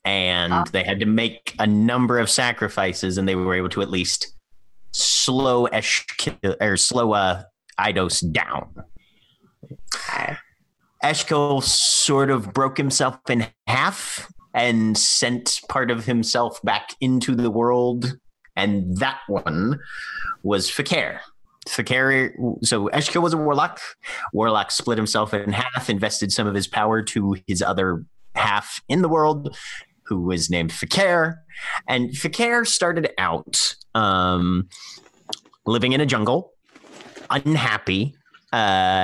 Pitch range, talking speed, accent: 100-130 Hz, 125 wpm, American